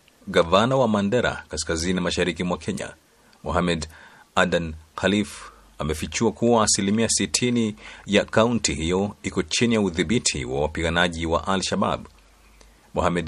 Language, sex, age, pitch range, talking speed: Swahili, male, 40-59, 85-100 Hz, 115 wpm